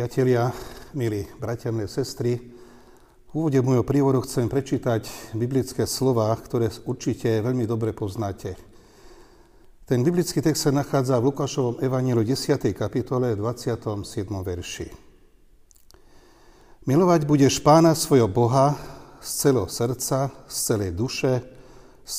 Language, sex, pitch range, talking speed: Slovak, male, 115-140 Hz, 115 wpm